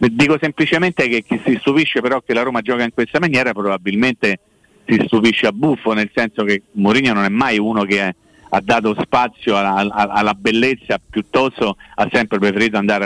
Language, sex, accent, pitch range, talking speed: Italian, male, native, 105-130 Hz, 180 wpm